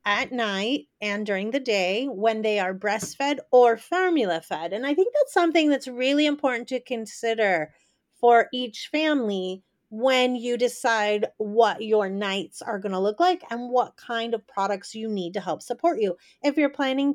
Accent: American